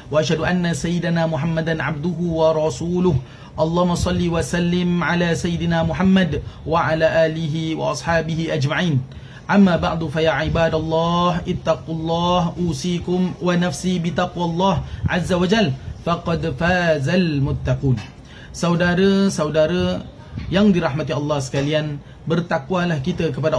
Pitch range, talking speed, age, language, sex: 155-180 Hz, 105 wpm, 30-49, Malay, male